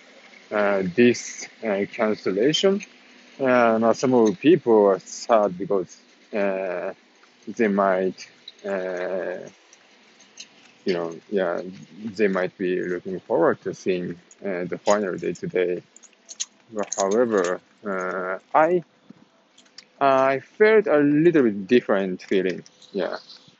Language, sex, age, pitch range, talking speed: English, male, 20-39, 100-150 Hz, 110 wpm